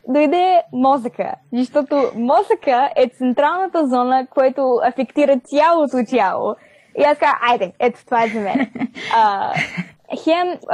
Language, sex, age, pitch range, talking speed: Bulgarian, female, 20-39, 215-265 Hz, 125 wpm